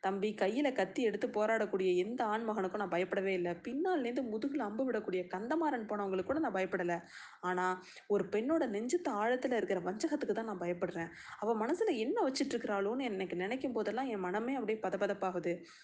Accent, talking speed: native, 150 wpm